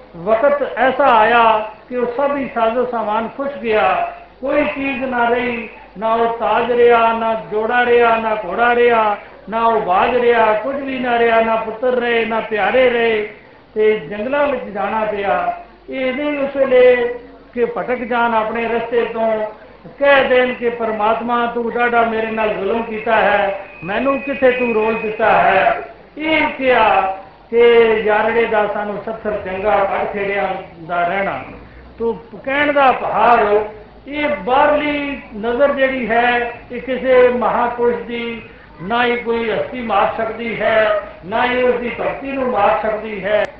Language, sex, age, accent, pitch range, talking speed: Hindi, male, 60-79, native, 215-255 Hz, 125 wpm